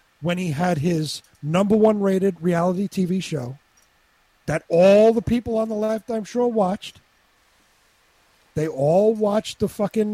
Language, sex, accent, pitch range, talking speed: English, male, American, 150-210 Hz, 140 wpm